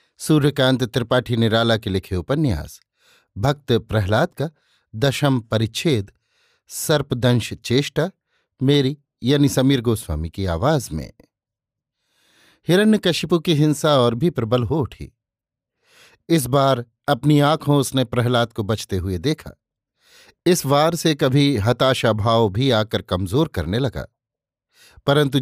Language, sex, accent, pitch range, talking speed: Hindi, male, native, 120-145 Hz, 120 wpm